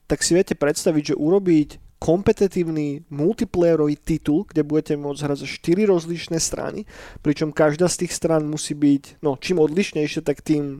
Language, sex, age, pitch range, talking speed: Slovak, male, 20-39, 145-165 Hz, 160 wpm